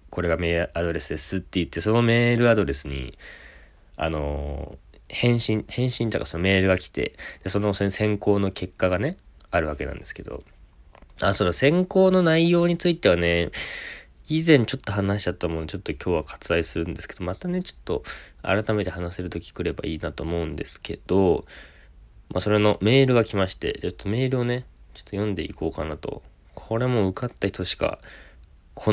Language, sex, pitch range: Japanese, male, 85-115 Hz